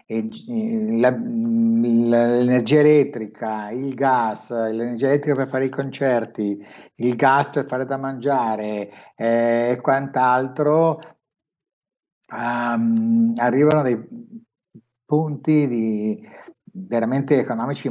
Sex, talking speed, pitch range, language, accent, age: male, 95 wpm, 115-140 Hz, Italian, native, 60-79